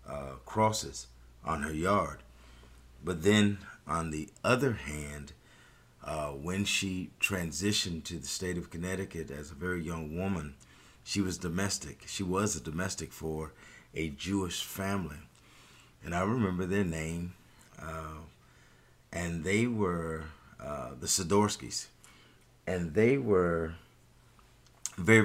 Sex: male